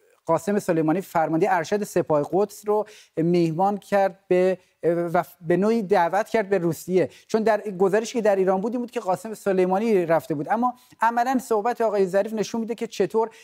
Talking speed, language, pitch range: 175 wpm, Persian, 175-220 Hz